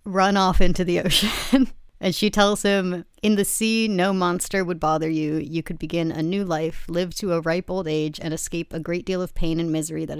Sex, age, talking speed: female, 30-49, 230 wpm